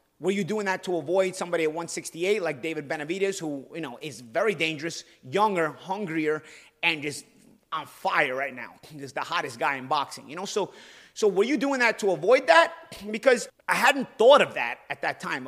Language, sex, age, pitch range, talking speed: English, male, 30-49, 155-210 Hz, 200 wpm